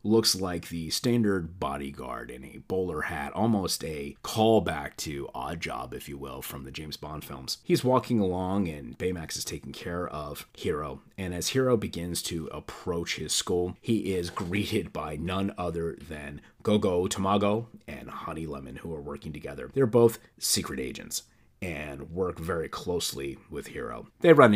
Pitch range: 80-100 Hz